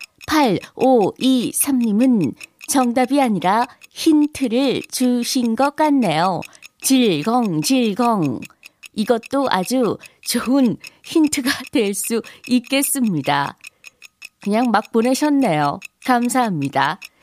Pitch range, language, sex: 240-280 Hz, Korean, female